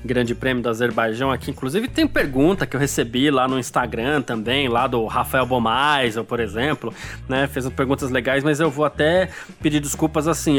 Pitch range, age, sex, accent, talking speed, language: 140-195 Hz, 20-39, male, Brazilian, 180 wpm, Portuguese